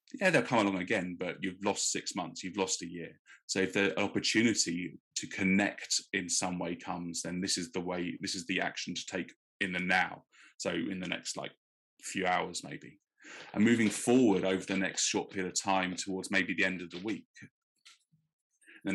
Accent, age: British, 20-39